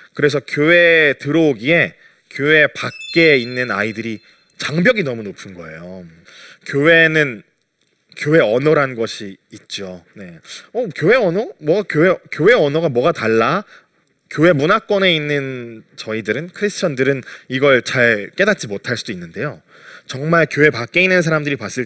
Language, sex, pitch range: Korean, male, 120-170 Hz